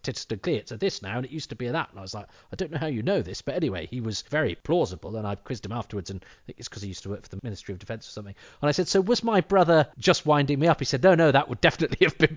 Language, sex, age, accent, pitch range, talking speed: English, male, 40-59, British, 100-135 Hz, 335 wpm